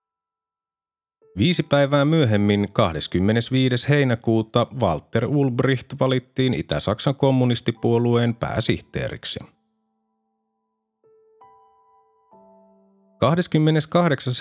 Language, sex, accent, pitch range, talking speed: Finnish, male, native, 110-155 Hz, 50 wpm